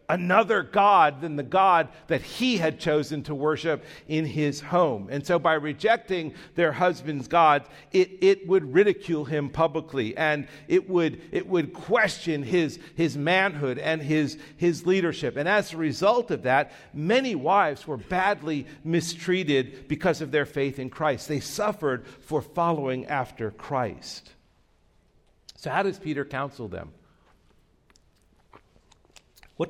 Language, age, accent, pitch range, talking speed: English, 50-69, American, 130-180 Hz, 140 wpm